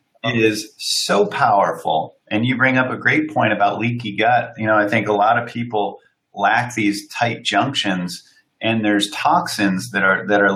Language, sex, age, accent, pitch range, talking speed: English, male, 30-49, American, 100-115 Hz, 180 wpm